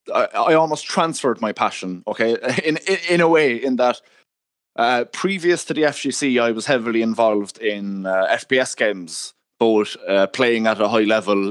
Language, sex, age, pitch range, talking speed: English, male, 20-39, 105-125 Hz, 175 wpm